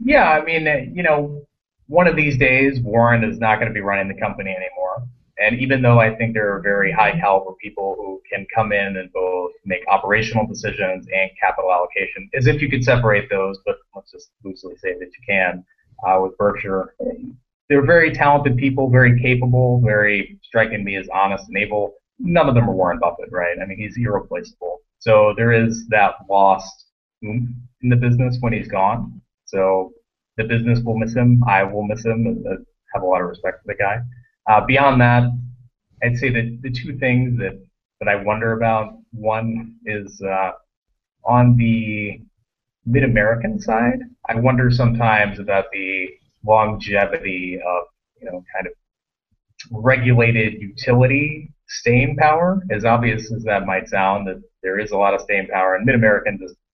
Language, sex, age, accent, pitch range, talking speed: English, male, 30-49, American, 100-130 Hz, 180 wpm